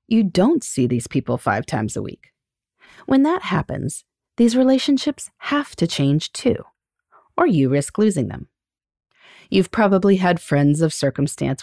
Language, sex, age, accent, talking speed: English, female, 30-49, American, 150 wpm